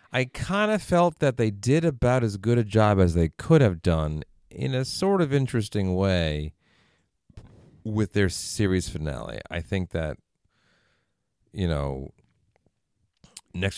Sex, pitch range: male, 80-110 Hz